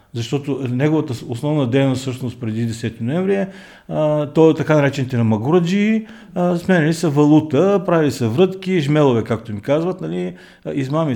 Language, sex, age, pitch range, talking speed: English, male, 50-69, 120-160 Hz, 145 wpm